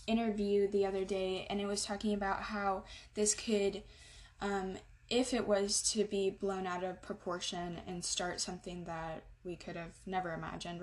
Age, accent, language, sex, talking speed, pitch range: 10-29, American, English, female, 170 wpm, 190-220 Hz